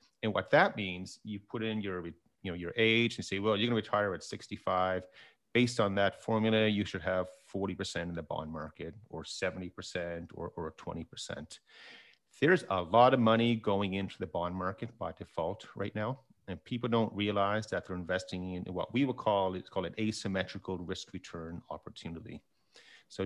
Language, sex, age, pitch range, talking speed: English, male, 30-49, 90-110 Hz, 185 wpm